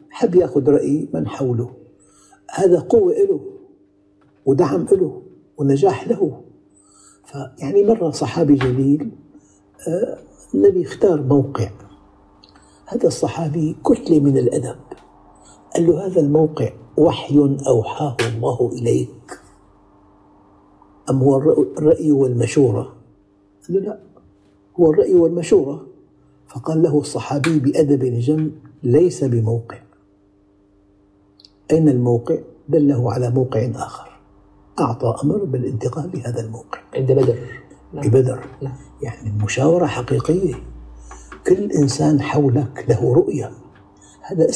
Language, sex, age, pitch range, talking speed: Arabic, male, 60-79, 110-150 Hz, 95 wpm